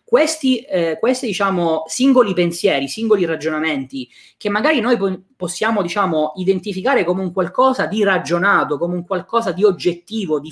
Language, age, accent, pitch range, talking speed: Italian, 20-39, native, 170-220 Hz, 145 wpm